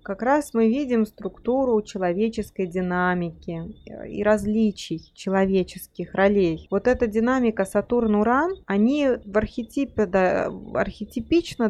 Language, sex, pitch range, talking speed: Russian, female, 185-235 Hz, 105 wpm